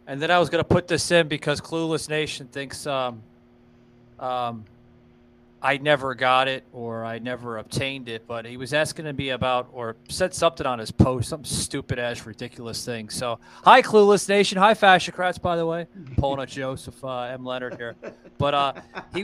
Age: 30-49